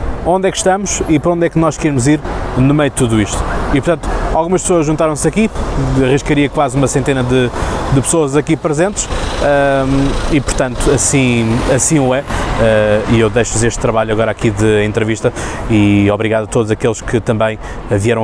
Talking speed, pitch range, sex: 190 wpm, 110-140 Hz, male